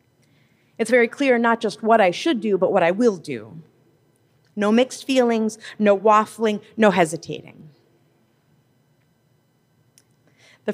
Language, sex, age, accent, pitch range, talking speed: English, female, 30-49, American, 155-205 Hz, 125 wpm